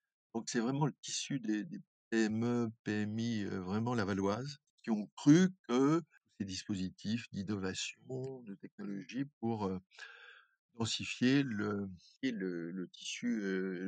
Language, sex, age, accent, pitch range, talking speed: French, male, 50-69, French, 95-125 Hz, 130 wpm